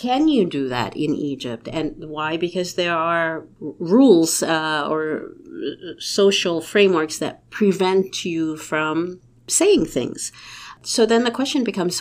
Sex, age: female, 50-69